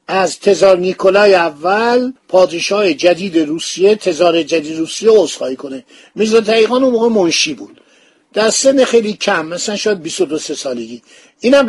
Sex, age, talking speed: male, 50-69, 135 wpm